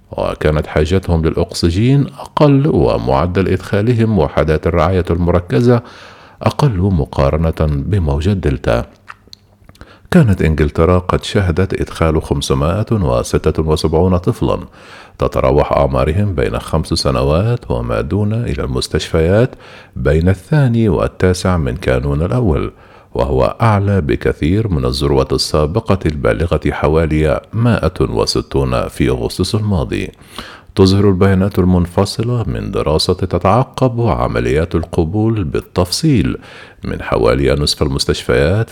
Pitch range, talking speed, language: 75-105 Hz, 95 wpm, Arabic